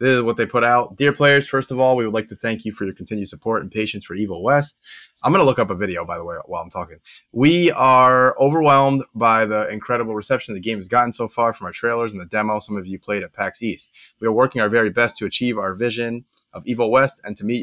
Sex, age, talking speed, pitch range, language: male, 20-39, 275 wpm, 105-130 Hz, English